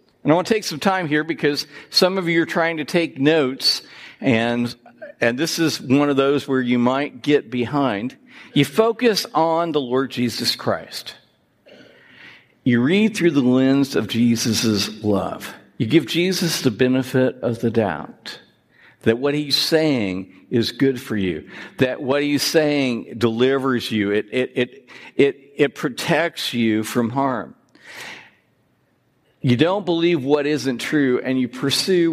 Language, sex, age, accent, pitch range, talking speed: English, male, 60-79, American, 130-190 Hz, 155 wpm